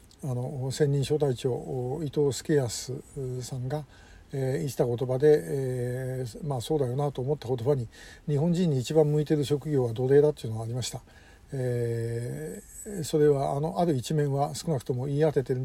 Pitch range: 135-165 Hz